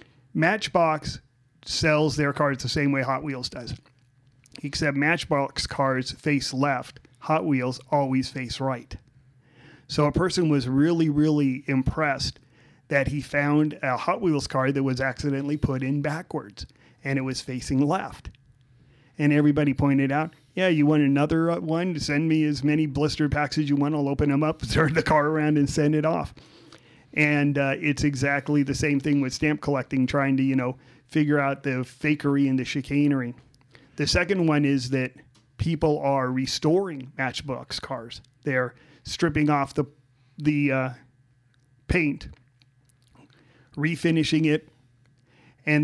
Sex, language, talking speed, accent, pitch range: male, English, 150 wpm, American, 130-150 Hz